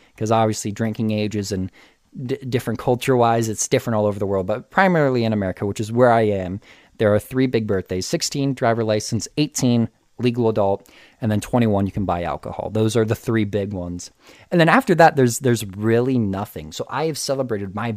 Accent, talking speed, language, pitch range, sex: American, 205 wpm, English, 110-140 Hz, male